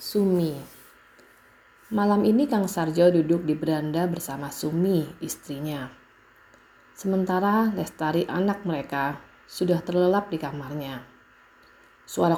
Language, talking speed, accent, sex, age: English, 95 wpm, Indonesian, female, 30-49